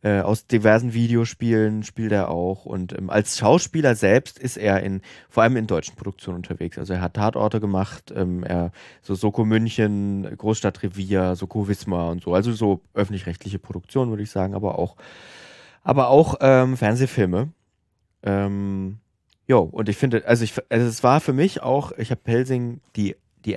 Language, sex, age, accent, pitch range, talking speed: German, male, 20-39, German, 100-120 Hz, 175 wpm